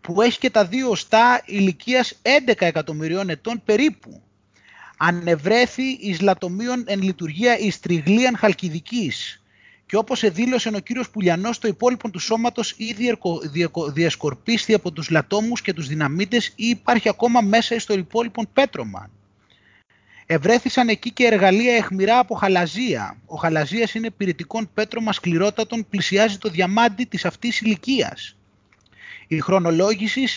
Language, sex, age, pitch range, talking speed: Greek, male, 30-49, 180-235 Hz, 130 wpm